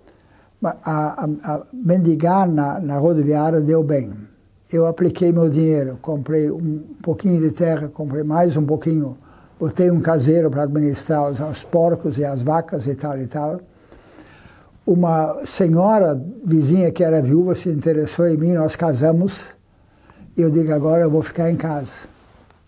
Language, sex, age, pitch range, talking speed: Portuguese, male, 60-79, 150-180 Hz, 150 wpm